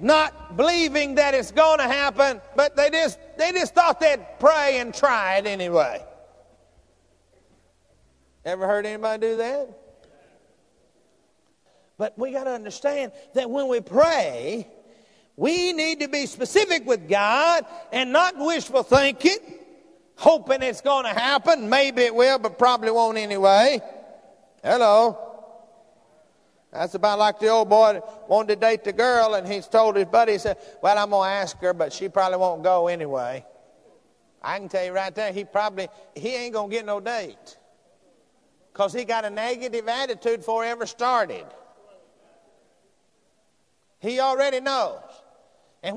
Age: 50-69